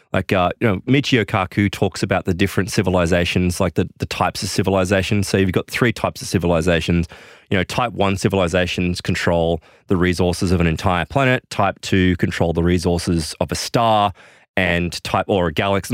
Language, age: English, 20-39